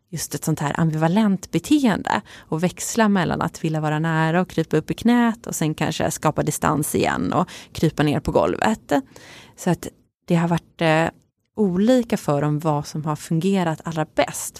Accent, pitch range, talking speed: native, 155-195 Hz, 175 wpm